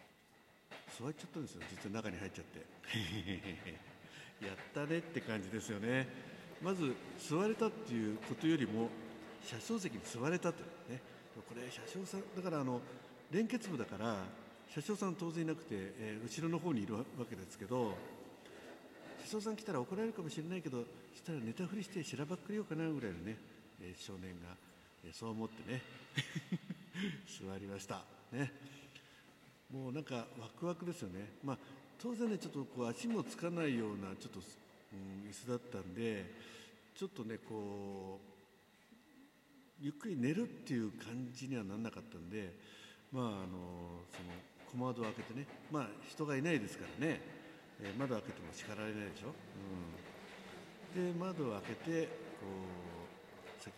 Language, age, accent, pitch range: Japanese, 60-79, native, 100-170 Hz